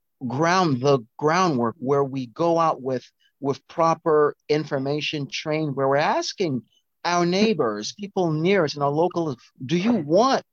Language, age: English, 40-59